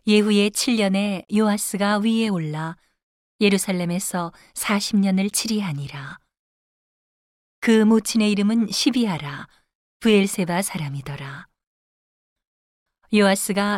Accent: native